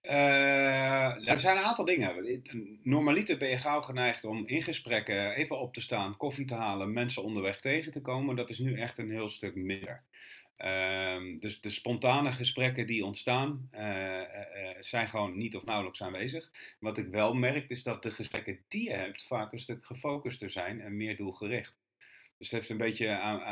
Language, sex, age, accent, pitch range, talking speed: Dutch, male, 40-59, Dutch, 105-125 Hz, 185 wpm